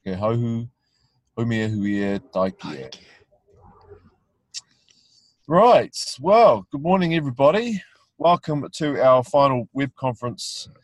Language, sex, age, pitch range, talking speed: English, male, 30-49, 105-135 Hz, 65 wpm